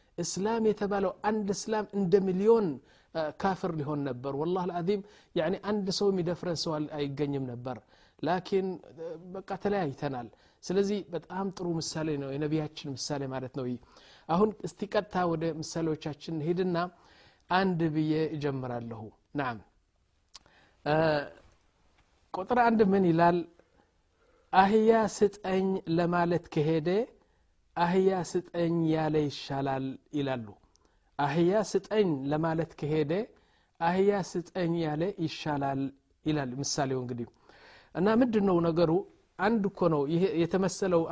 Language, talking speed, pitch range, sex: Amharic, 90 wpm, 150-190 Hz, male